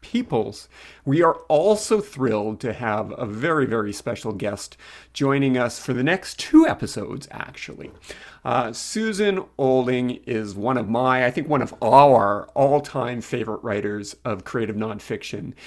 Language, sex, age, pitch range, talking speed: English, male, 40-59, 115-145 Hz, 150 wpm